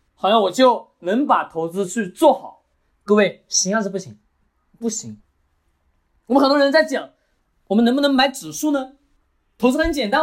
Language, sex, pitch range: Chinese, male, 200-295 Hz